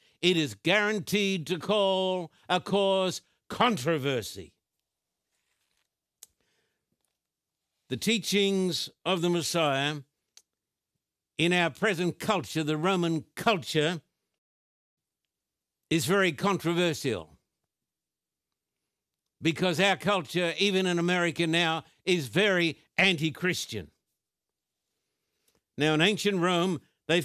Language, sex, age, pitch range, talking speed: English, male, 60-79, 140-190 Hz, 85 wpm